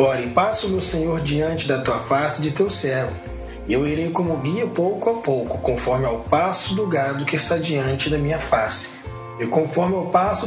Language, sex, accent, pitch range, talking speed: English, male, Brazilian, 135-190 Hz, 205 wpm